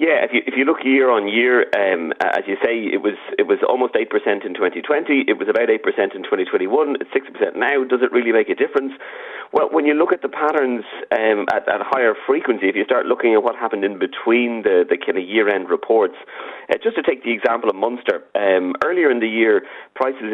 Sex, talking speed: male, 220 wpm